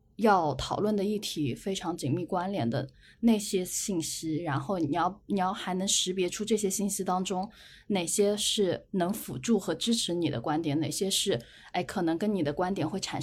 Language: Chinese